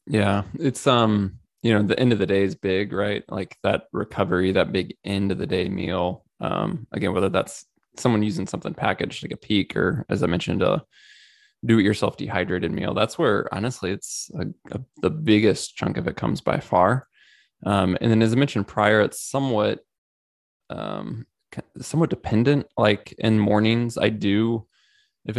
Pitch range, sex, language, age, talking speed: 100-115 Hz, male, English, 20-39, 175 wpm